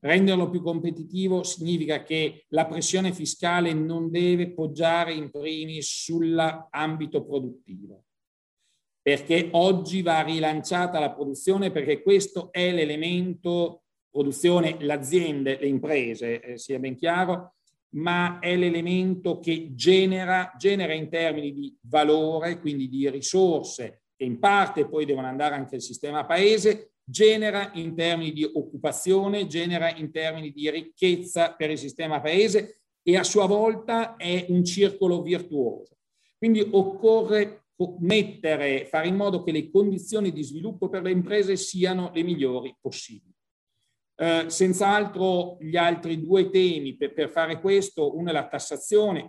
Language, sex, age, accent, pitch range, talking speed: Italian, male, 50-69, native, 150-185 Hz, 135 wpm